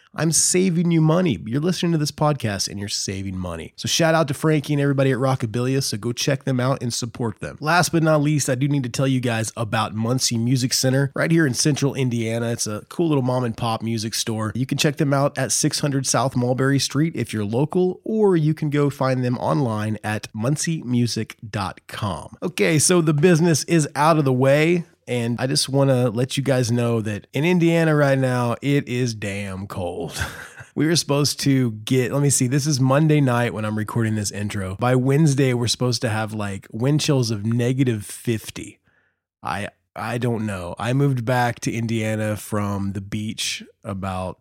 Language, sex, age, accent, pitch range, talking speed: English, male, 20-39, American, 110-145 Hz, 205 wpm